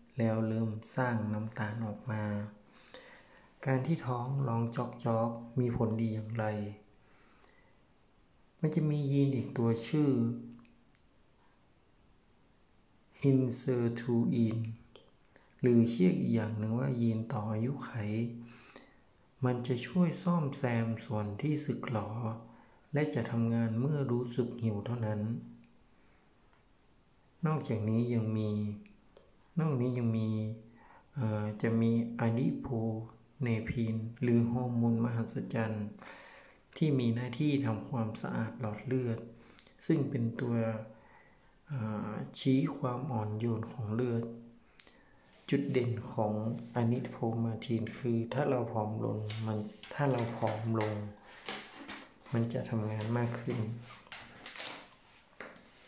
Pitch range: 110-125 Hz